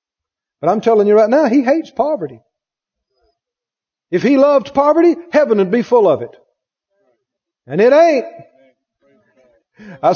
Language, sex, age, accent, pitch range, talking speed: English, male, 50-69, American, 195-275 Hz, 135 wpm